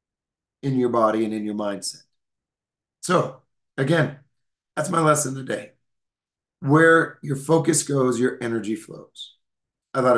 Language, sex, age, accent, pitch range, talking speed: English, male, 30-49, American, 125-150 Hz, 130 wpm